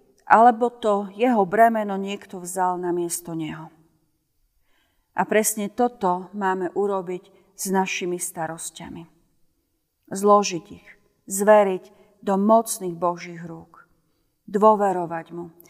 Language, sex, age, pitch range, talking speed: Slovak, female, 40-59, 170-215 Hz, 100 wpm